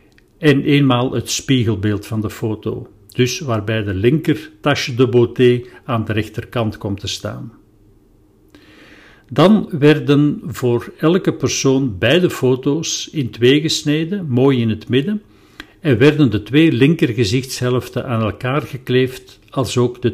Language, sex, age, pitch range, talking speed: Dutch, male, 50-69, 105-135 Hz, 135 wpm